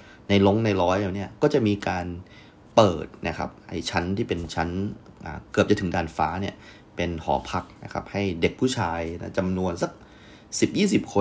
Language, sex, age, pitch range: Thai, male, 30-49, 85-105 Hz